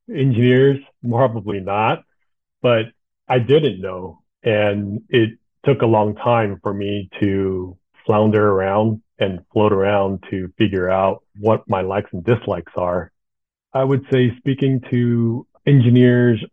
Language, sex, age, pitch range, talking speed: English, male, 40-59, 100-120 Hz, 130 wpm